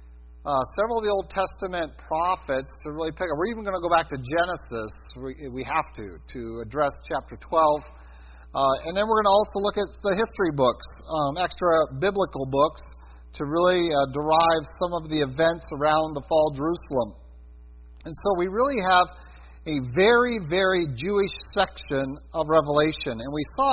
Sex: male